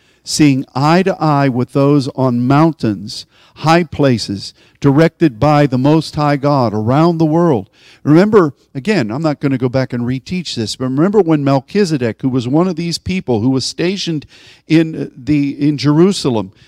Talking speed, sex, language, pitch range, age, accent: 170 wpm, male, English, 120-160 Hz, 50-69, American